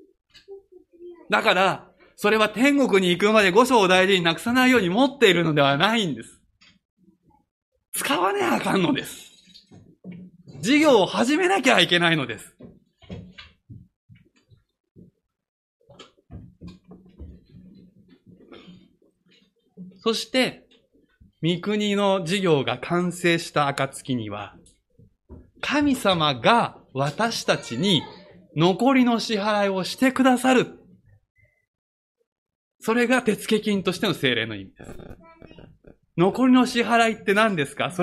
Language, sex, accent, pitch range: Japanese, male, native, 155-245 Hz